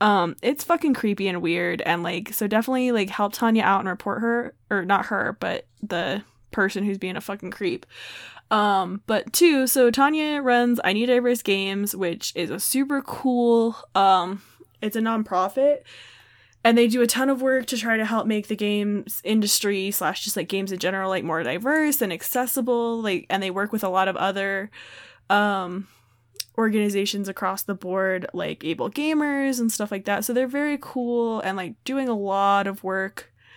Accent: American